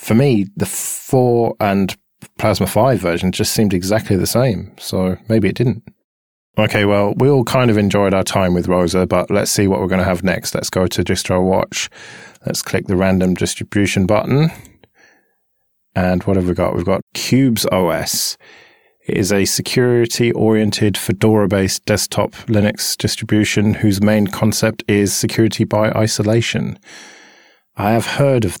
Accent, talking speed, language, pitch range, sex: British, 160 wpm, English, 95-115 Hz, male